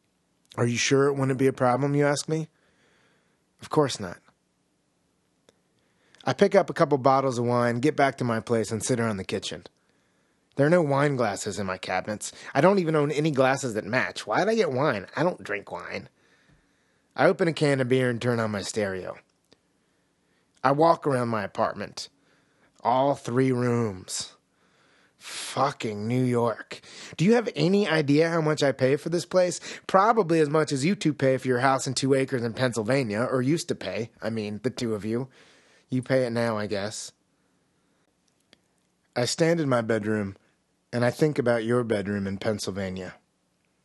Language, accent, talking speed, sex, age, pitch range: English, American, 185 wpm, male, 30-49, 110-145 Hz